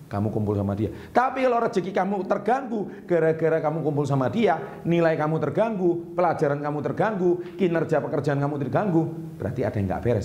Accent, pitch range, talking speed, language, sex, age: native, 110-165 Hz, 170 wpm, Indonesian, male, 40-59